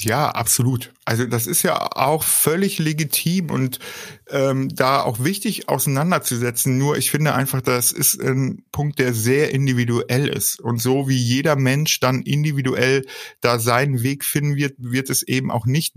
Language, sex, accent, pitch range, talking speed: German, male, German, 125-160 Hz, 165 wpm